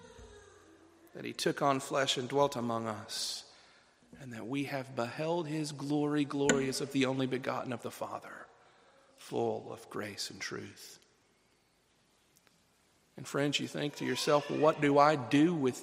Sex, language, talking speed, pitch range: male, English, 155 wpm, 130-165 Hz